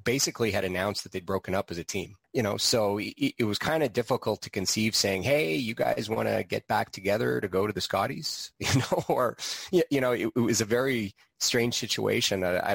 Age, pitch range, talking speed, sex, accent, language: 30-49, 95-115 Hz, 235 wpm, male, American, English